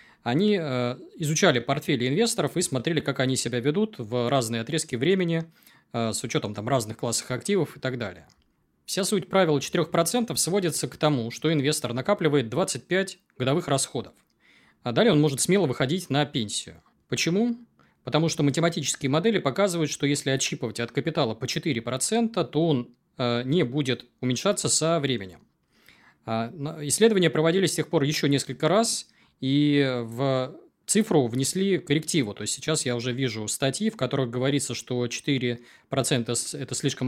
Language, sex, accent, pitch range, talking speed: Russian, male, native, 125-170 Hz, 145 wpm